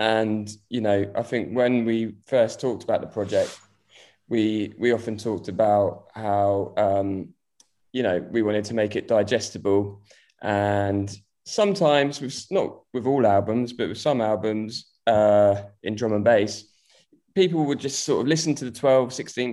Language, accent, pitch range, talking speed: English, British, 105-125 Hz, 165 wpm